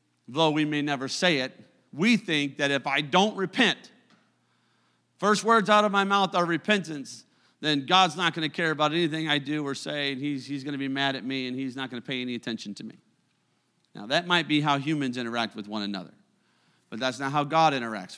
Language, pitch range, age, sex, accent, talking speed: English, 135-185 Hz, 40-59, male, American, 210 wpm